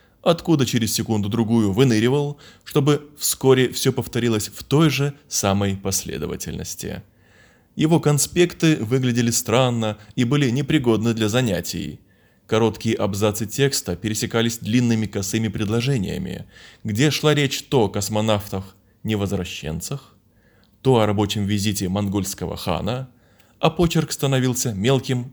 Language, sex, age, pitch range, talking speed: Russian, male, 20-39, 105-130 Hz, 105 wpm